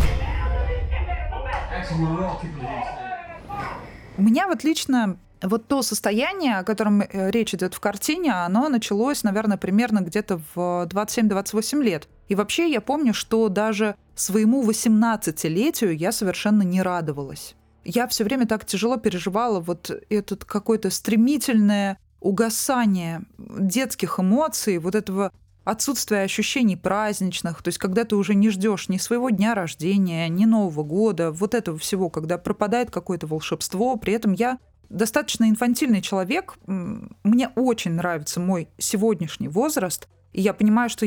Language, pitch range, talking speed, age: Russian, 180-230 Hz, 130 wpm, 20-39